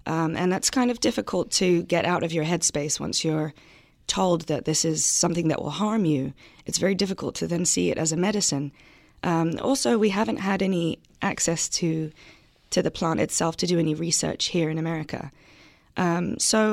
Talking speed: 195 wpm